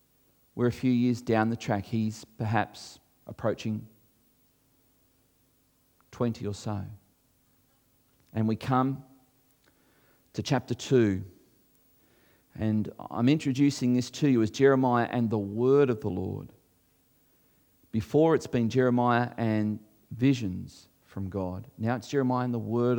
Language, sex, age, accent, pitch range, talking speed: English, male, 40-59, Australian, 110-155 Hz, 125 wpm